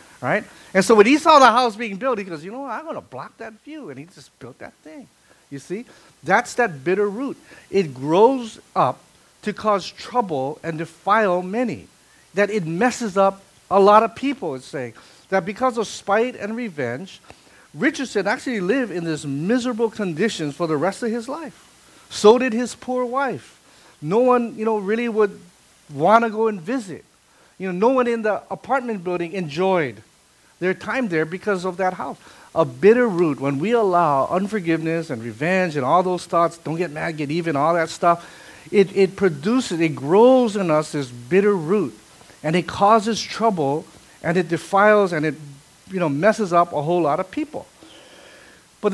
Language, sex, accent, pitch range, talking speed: English, male, American, 165-230 Hz, 190 wpm